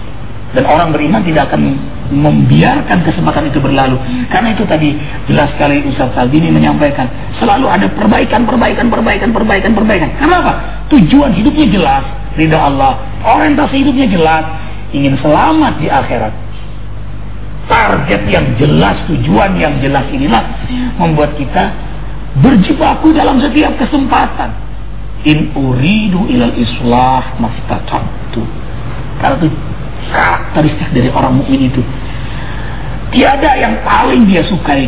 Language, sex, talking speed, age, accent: English, male, 115 wpm, 40-59, Indonesian